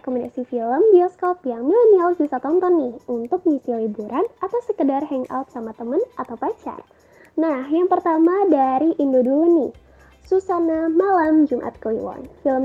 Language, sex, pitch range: Indonesian, female, 255-350 Hz